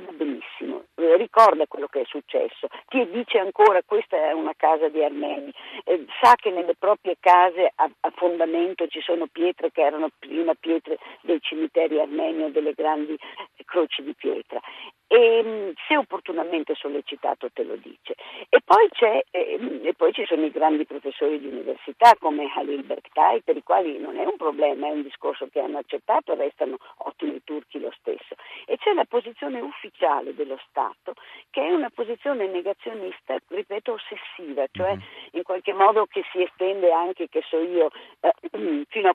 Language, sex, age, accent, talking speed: Italian, female, 50-69, native, 160 wpm